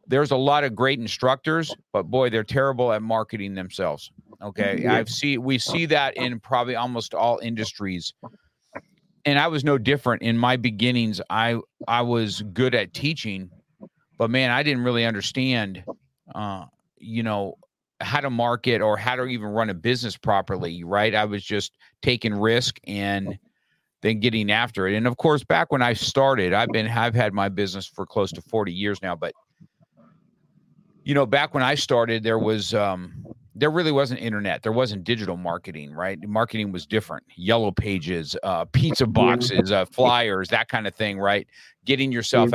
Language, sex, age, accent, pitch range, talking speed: English, male, 50-69, American, 105-130 Hz, 175 wpm